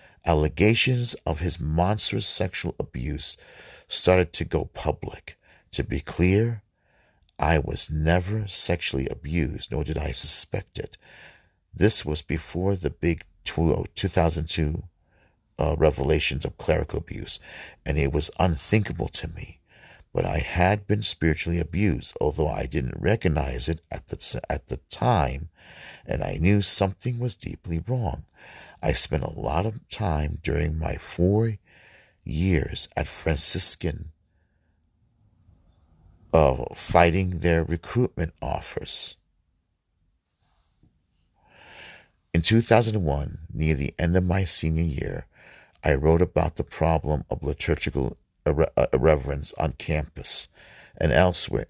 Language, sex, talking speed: English, male, 115 wpm